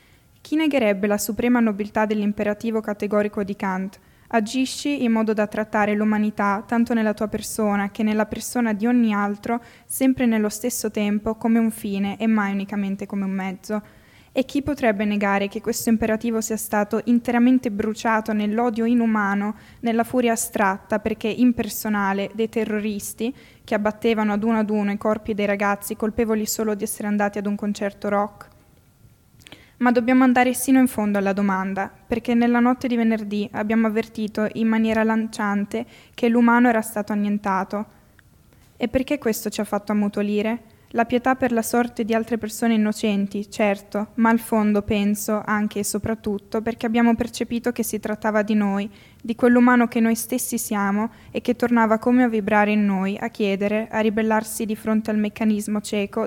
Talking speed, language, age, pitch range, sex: 165 wpm, Italian, 10-29, 210-235 Hz, female